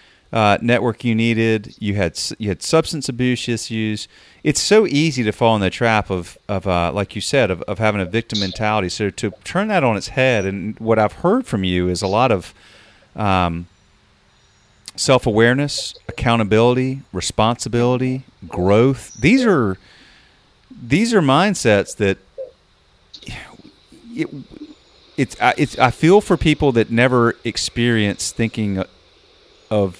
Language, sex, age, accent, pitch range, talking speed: English, male, 40-59, American, 100-130 Hz, 145 wpm